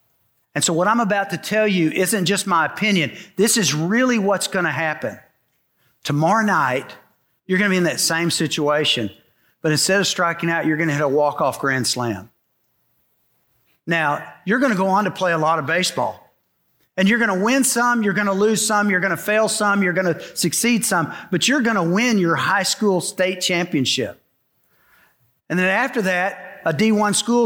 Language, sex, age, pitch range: English, male, 50-69, 170-215 Hz